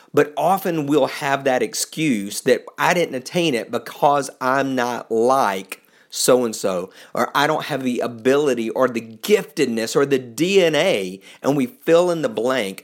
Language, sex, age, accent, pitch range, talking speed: English, male, 50-69, American, 115-160 Hz, 160 wpm